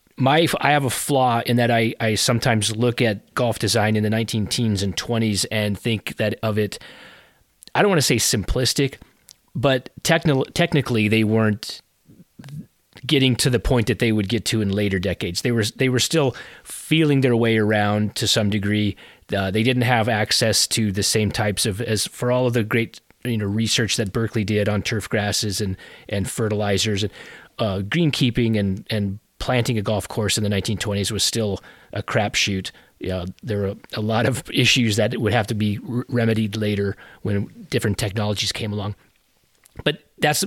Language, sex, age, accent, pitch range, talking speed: English, male, 30-49, American, 105-120 Hz, 185 wpm